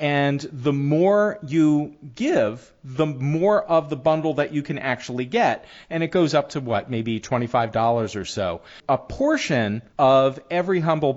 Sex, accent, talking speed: male, American, 160 wpm